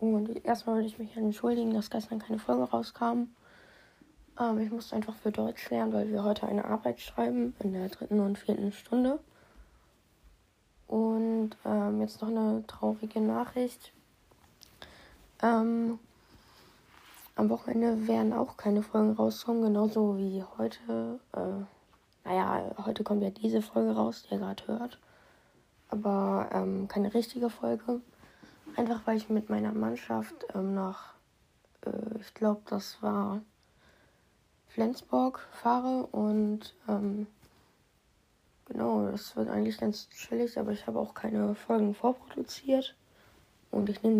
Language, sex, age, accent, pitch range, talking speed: German, female, 20-39, German, 190-225 Hz, 135 wpm